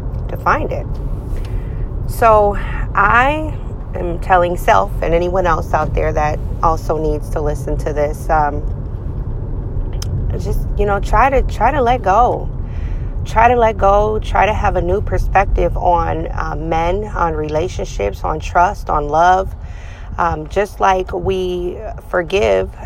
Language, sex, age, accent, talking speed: English, female, 30-49, American, 140 wpm